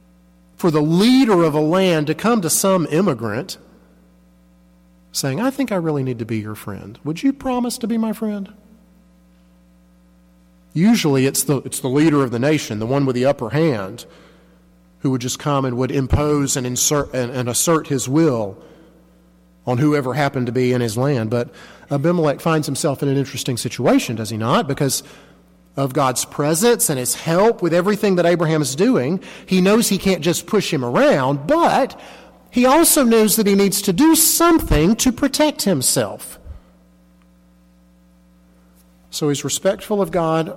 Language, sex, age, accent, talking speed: English, male, 40-59, American, 165 wpm